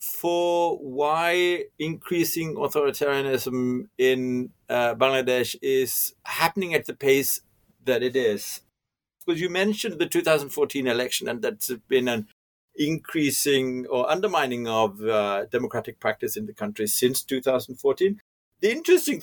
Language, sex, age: English, male, 60-79